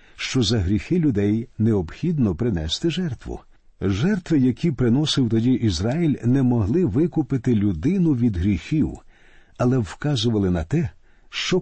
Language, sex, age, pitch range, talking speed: Ukrainian, male, 50-69, 105-145 Hz, 120 wpm